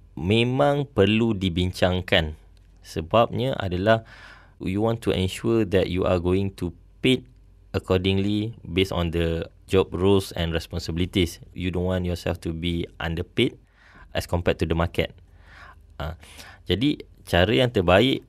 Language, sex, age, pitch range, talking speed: English, male, 20-39, 90-100 Hz, 130 wpm